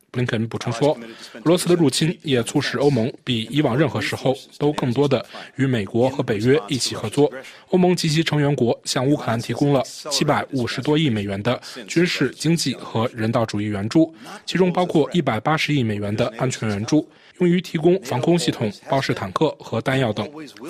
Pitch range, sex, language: 120-155 Hz, male, Chinese